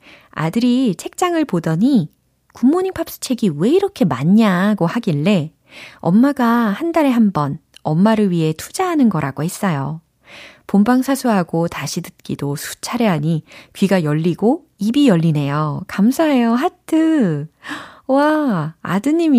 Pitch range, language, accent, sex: 165-240 Hz, Korean, native, female